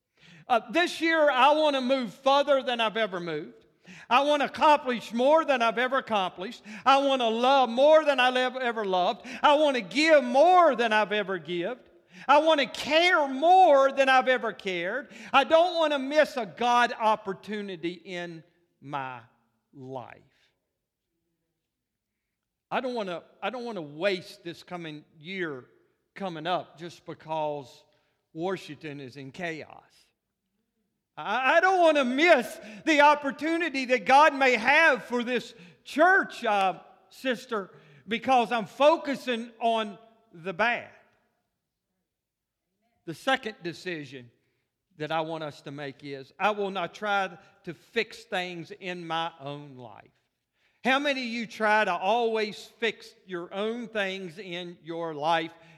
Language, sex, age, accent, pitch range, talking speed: English, male, 50-69, American, 170-260 Hz, 140 wpm